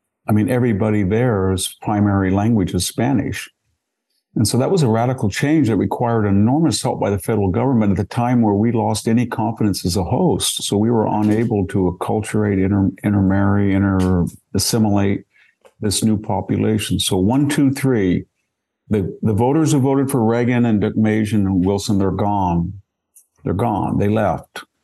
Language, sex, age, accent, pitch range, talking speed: English, male, 50-69, American, 100-115 Hz, 165 wpm